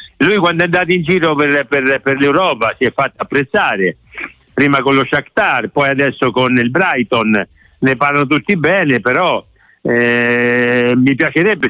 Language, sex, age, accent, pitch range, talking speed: Italian, male, 60-79, native, 125-155 Hz, 160 wpm